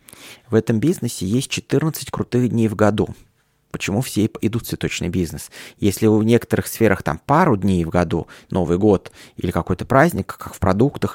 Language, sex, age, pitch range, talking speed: Russian, male, 20-39, 95-125 Hz, 170 wpm